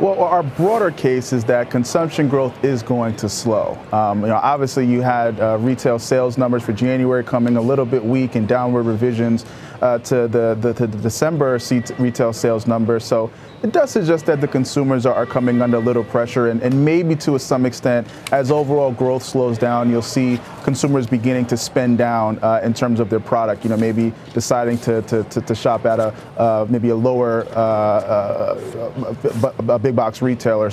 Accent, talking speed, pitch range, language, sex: American, 195 wpm, 120-140 Hz, English, male